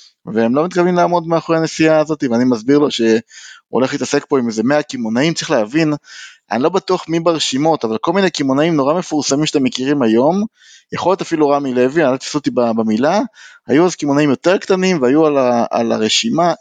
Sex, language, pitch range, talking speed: male, Hebrew, 120-160 Hz, 200 wpm